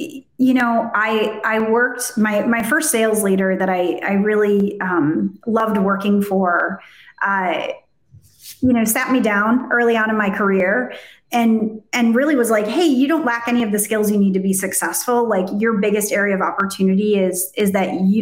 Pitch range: 195-235 Hz